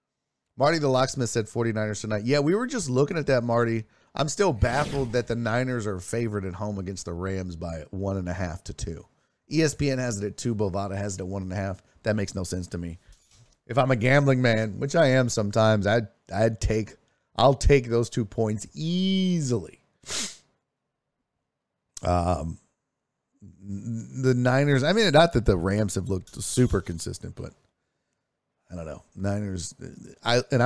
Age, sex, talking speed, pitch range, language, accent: 40-59, male, 180 wpm, 100-130 Hz, English, American